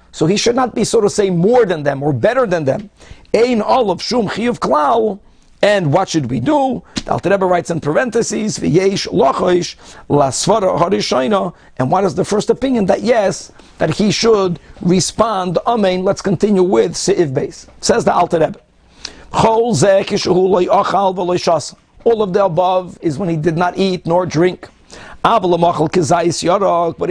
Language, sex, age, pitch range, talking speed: English, male, 50-69, 170-215 Hz, 150 wpm